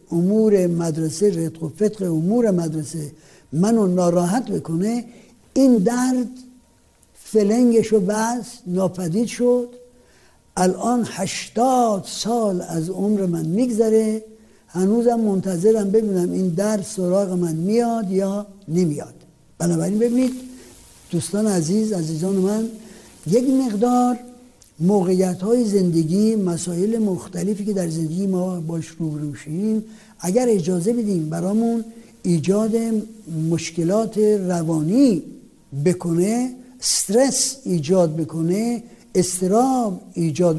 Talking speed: 95 wpm